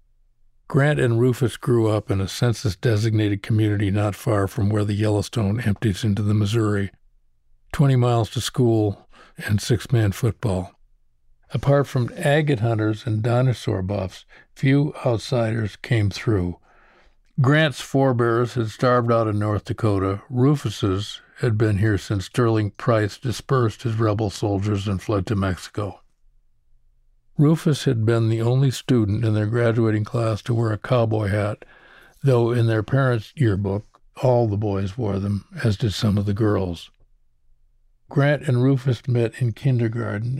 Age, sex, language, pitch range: 60-79, male, English, 100-125 Hz